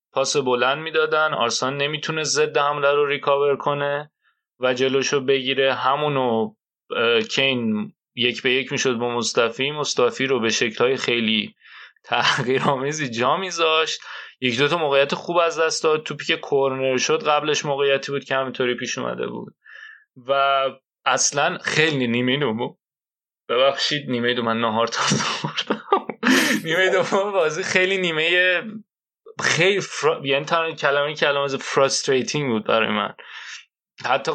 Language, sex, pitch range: Persian, male, 135-165 Hz